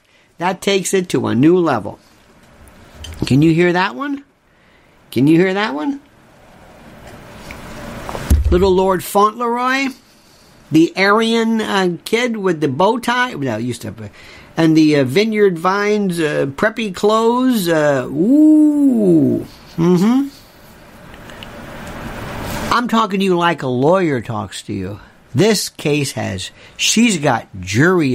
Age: 50-69